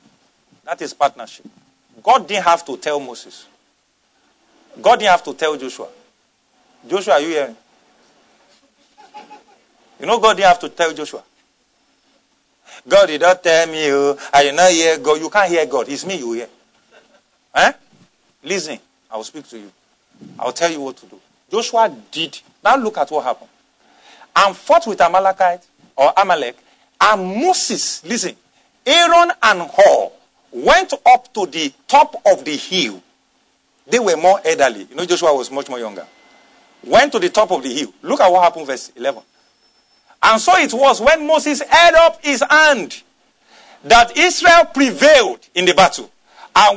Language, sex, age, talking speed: English, male, 50-69, 160 wpm